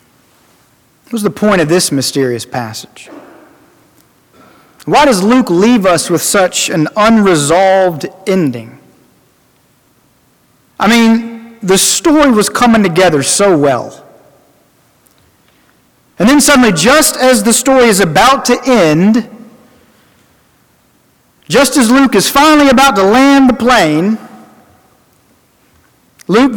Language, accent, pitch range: English, American, 165-250 Hz